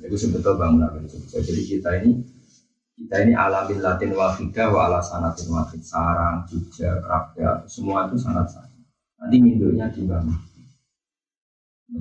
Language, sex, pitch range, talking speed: Malay, male, 85-120 Hz, 125 wpm